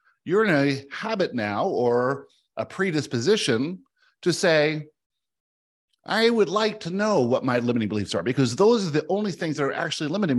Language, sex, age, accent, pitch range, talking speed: English, male, 50-69, American, 130-180 Hz, 175 wpm